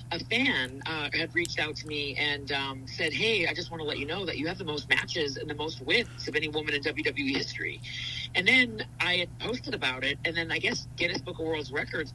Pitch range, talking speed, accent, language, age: 130-165 Hz, 250 wpm, American, English, 40-59